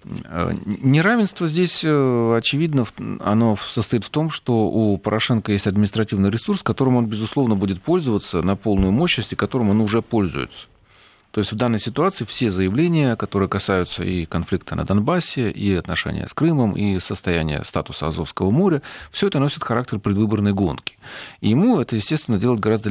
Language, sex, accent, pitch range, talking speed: Russian, male, native, 95-130 Hz, 155 wpm